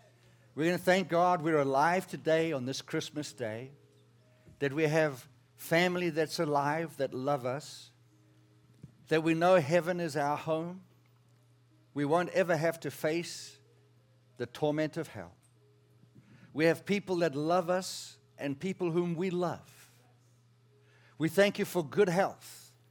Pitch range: 120-180 Hz